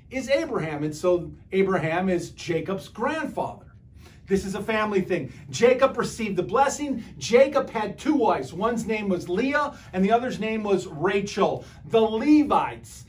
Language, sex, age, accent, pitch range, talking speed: English, male, 40-59, American, 150-220 Hz, 150 wpm